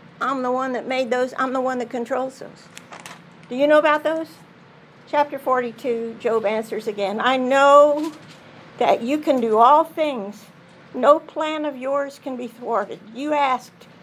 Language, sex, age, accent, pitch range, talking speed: English, female, 50-69, American, 230-290 Hz, 165 wpm